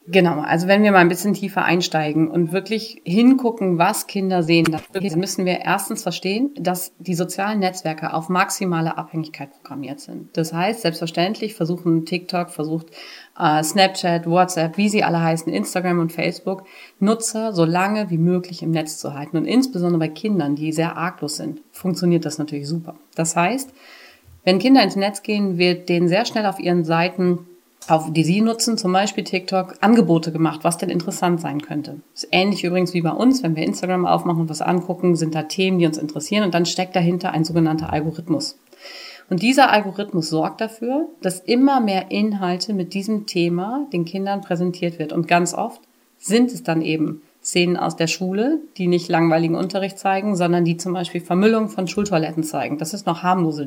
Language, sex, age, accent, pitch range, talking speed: German, female, 30-49, German, 165-195 Hz, 185 wpm